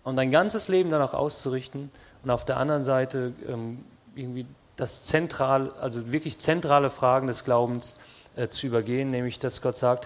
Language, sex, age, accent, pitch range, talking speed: English, male, 30-49, German, 120-140 Hz, 165 wpm